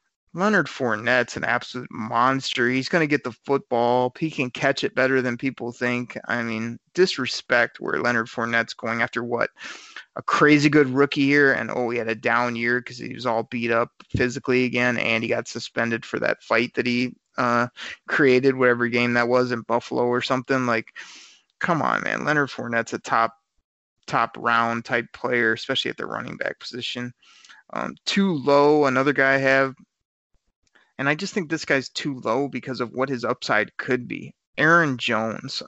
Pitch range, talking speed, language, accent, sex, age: 120-135 Hz, 180 wpm, English, American, male, 20-39